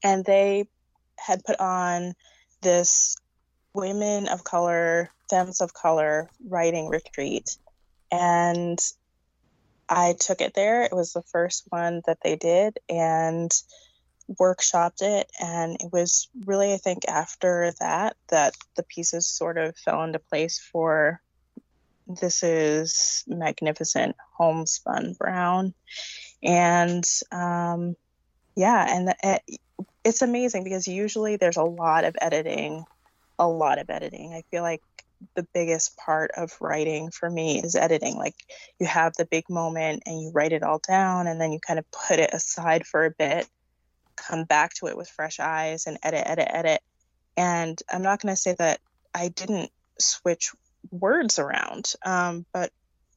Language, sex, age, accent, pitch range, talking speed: English, female, 20-39, American, 160-185 Hz, 150 wpm